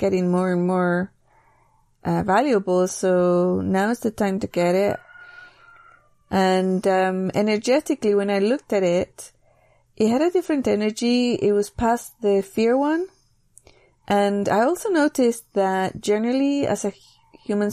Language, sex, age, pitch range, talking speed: English, female, 30-49, 180-215 Hz, 140 wpm